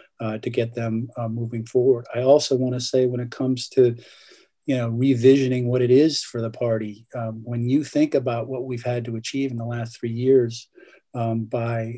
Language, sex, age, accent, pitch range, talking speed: English, male, 50-69, American, 120-130 Hz, 205 wpm